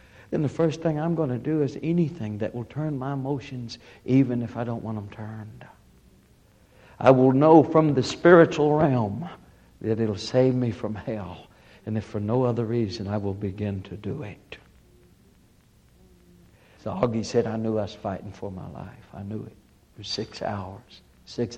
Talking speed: 185 wpm